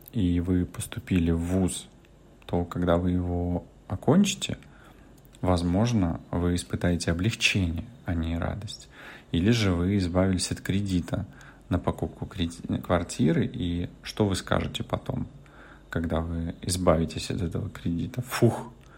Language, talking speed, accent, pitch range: Russian, 120 wpm, native, 90-105 Hz